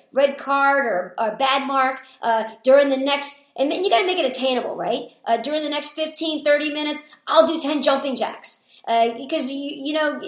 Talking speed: 200 wpm